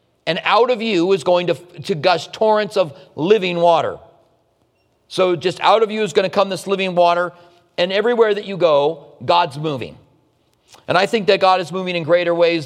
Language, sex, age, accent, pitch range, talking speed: English, male, 40-59, American, 155-175 Hz, 200 wpm